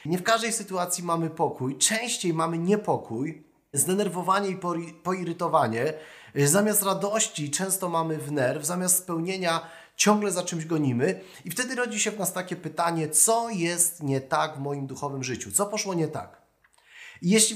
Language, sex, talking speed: Polish, male, 150 wpm